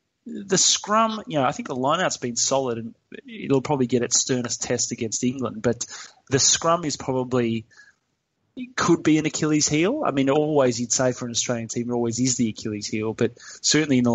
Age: 20-39